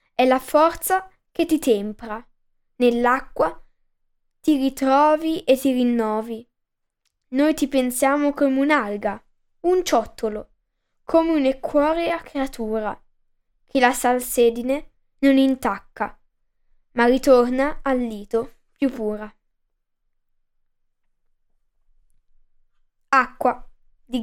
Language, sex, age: Italian, female, 10-29